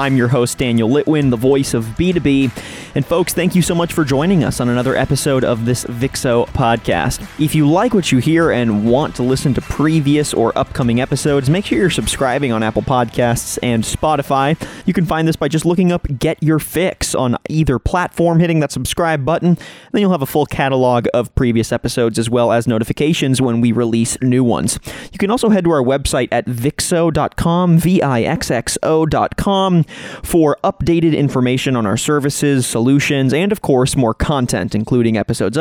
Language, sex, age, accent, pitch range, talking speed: English, male, 30-49, American, 125-165 Hz, 185 wpm